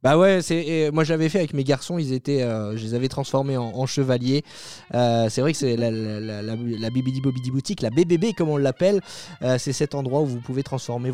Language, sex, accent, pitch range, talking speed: French, male, French, 125-165 Hz, 250 wpm